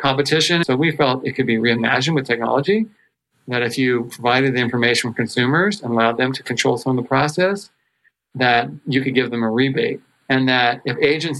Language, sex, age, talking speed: English, male, 40-59, 200 wpm